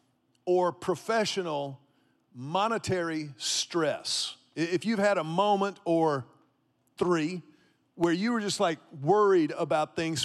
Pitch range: 150-200 Hz